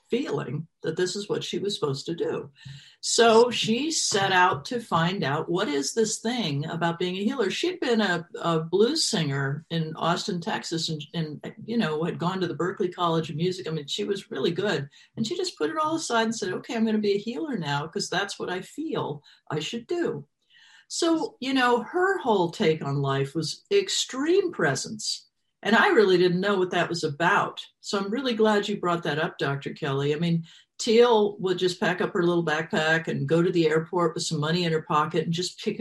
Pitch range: 160-225 Hz